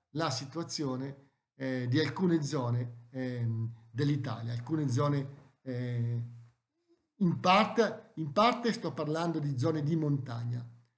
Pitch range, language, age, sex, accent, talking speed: 140-190 Hz, Italian, 50-69, male, native, 115 wpm